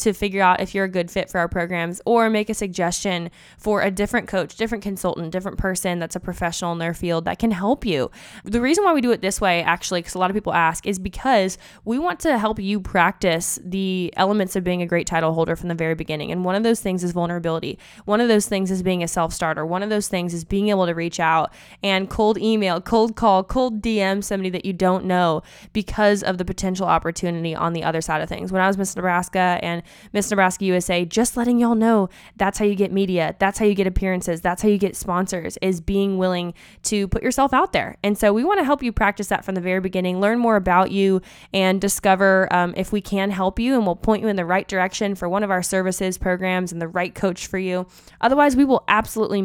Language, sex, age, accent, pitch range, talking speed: English, female, 20-39, American, 180-210 Hz, 245 wpm